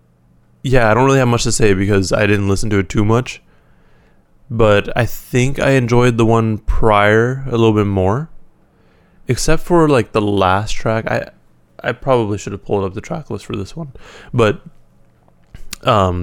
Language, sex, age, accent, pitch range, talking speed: English, male, 20-39, American, 95-125 Hz, 180 wpm